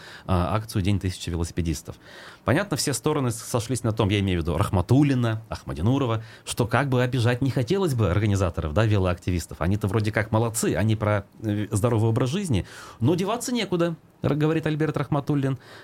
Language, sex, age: Russian, male, 30-49